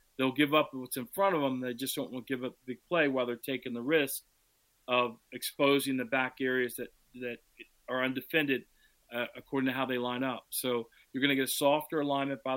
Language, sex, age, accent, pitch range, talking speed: English, male, 40-59, American, 120-140 Hz, 235 wpm